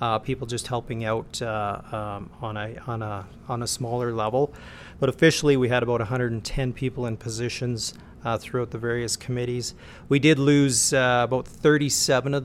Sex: male